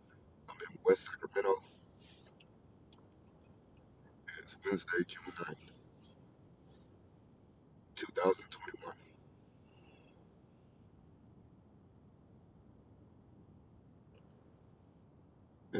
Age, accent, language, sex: 50-69, American, English, male